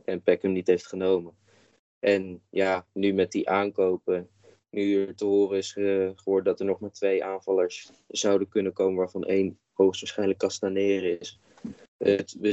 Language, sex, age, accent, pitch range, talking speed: Dutch, male, 20-39, Dutch, 95-105 Hz, 160 wpm